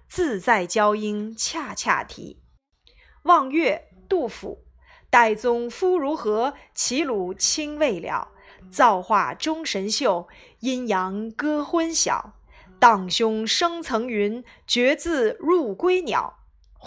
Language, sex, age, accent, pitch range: Chinese, female, 20-39, native, 210-315 Hz